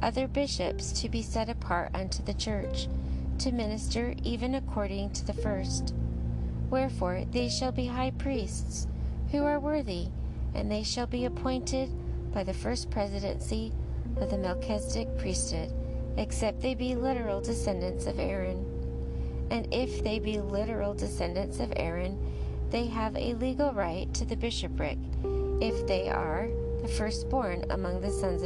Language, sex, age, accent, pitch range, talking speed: English, female, 30-49, American, 65-75 Hz, 145 wpm